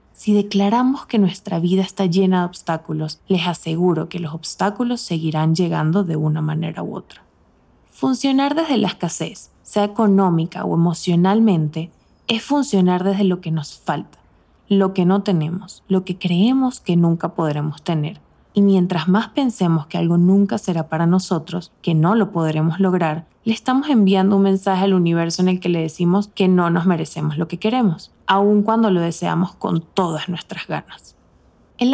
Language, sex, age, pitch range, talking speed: Spanish, female, 20-39, 165-200 Hz, 170 wpm